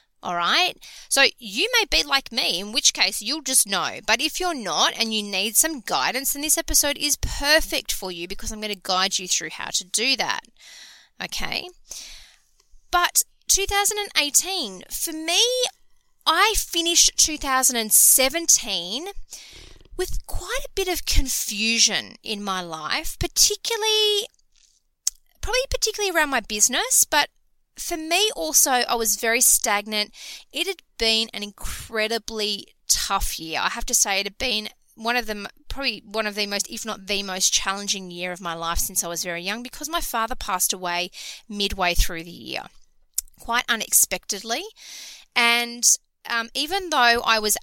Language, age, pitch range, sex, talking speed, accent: English, 20-39, 200-315 Hz, female, 155 wpm, Australian